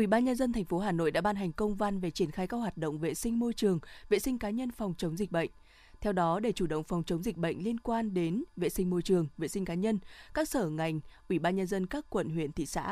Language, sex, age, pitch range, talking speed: Vietnamese, female, 20-39, 170-220 Hz, 295 wpm